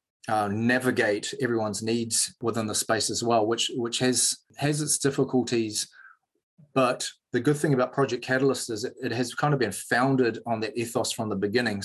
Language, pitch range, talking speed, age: English, 115-130 Hz, 180 wpm, 30-49